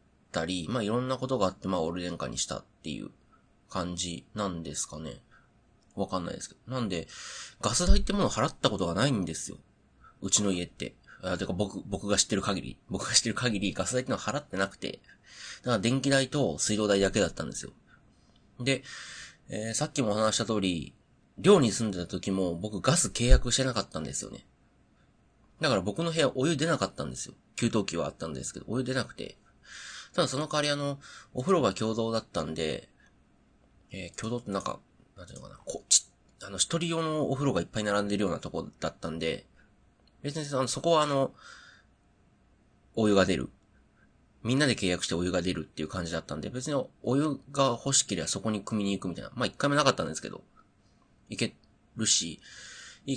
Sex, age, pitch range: male, 30-49, 95-130 Hz